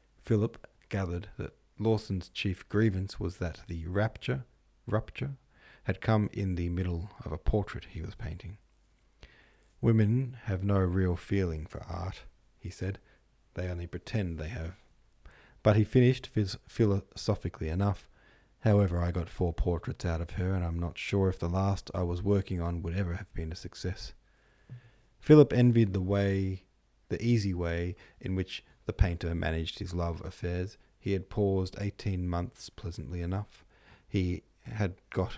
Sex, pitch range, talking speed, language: male, 85-105 Hz, 155 wpm, English